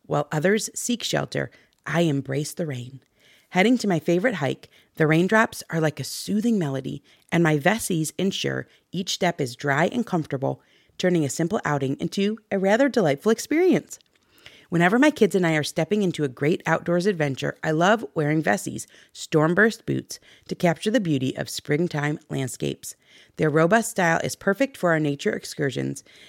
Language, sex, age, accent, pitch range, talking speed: English, female, 30-49, American, 145-205 Hz, 165 wpm